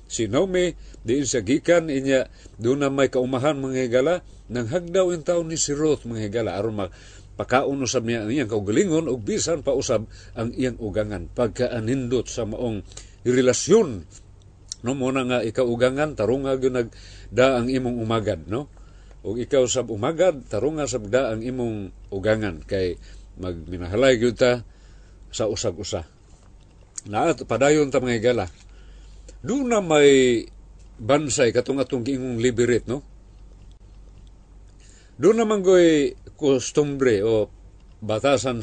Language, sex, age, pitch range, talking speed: Filipino, male, 50-69, 100-145 Hz, 125 wpm